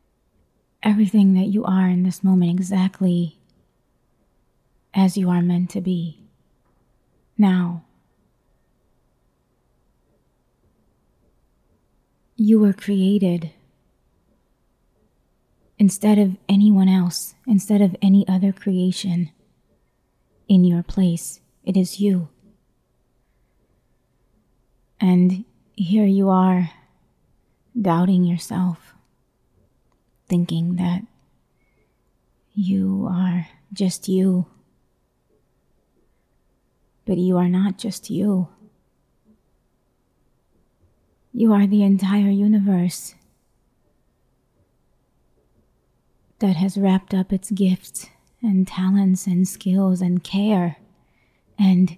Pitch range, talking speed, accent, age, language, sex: 180-200 Hz, 80 wpm, American, 20-39, English, female